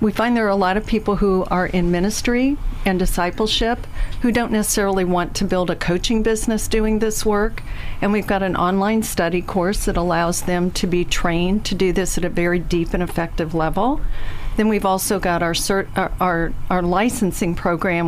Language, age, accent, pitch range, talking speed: English, 50-69, American, 170-205 Hz, 200 wpm